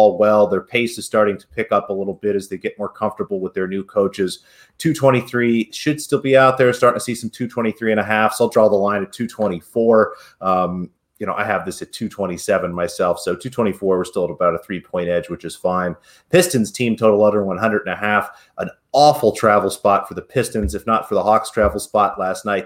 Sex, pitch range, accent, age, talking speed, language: male, 95-110 Hz, American, 30-49, 225 wpm, English